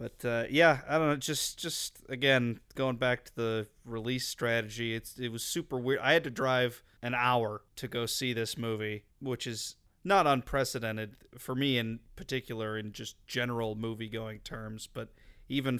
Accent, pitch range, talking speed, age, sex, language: American, 115-130 Hz, 175 wpm, 30-49, male, English